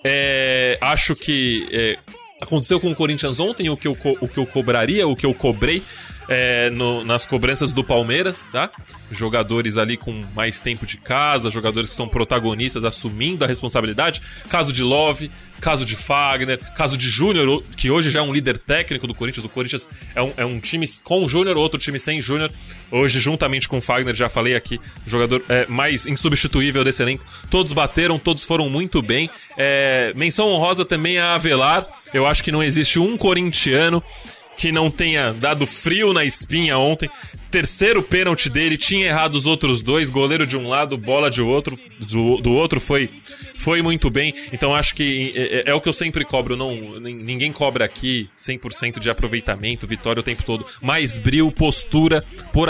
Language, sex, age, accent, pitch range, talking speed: Portuguese, male, 20-39, Brazilian, 125-155 Hz, 180 wpm